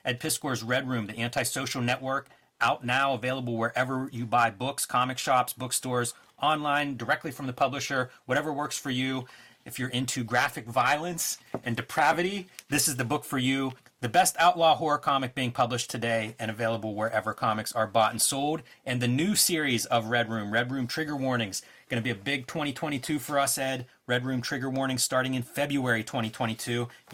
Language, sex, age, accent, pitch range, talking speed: English, male, 30-49, American, 120-145 Hz, 180 wpm